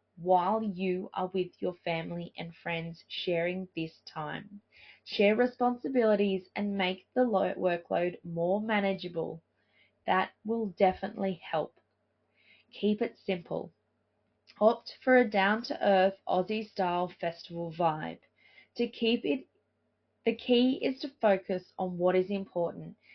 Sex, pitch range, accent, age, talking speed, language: female, 180-220 Hz, Australian, 20-39, 115 wpm, English